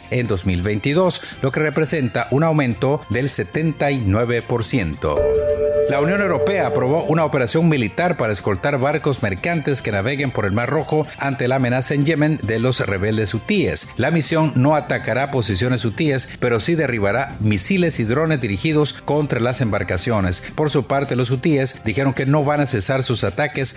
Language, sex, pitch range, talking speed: Spanish, male, 115-150 Hz, 160 wpm